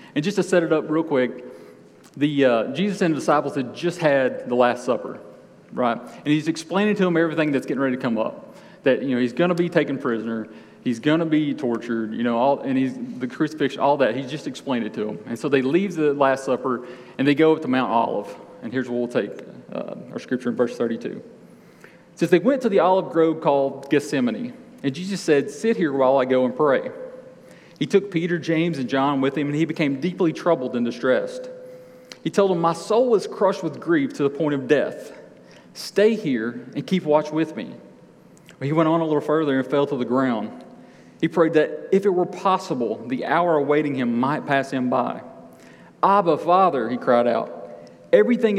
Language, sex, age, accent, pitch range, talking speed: English, male, 40-59, American, 135-195 Hz, 215 wpm